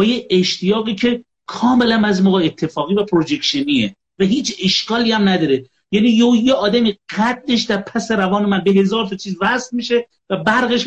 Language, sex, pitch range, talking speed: Persian, male, 185-230 Hz, 165 wpm